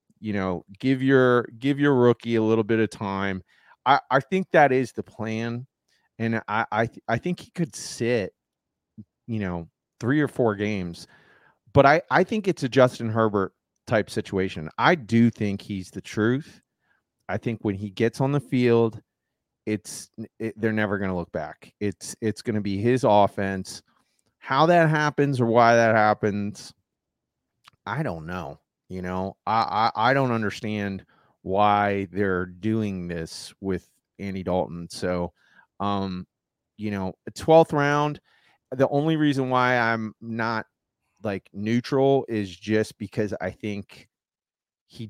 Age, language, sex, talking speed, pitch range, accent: 30-49, English, male, 155 wpm, 100-120 Hz, American